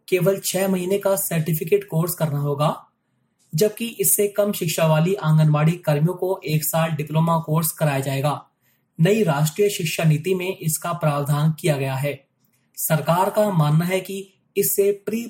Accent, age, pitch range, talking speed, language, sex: native, 20-39, 155-195 Hz, 55 wpm, Hindi, male